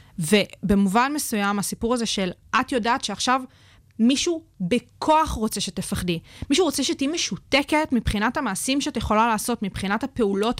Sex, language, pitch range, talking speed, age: female, Hebrew, 195-250 Hz, 130 wpm, 20-39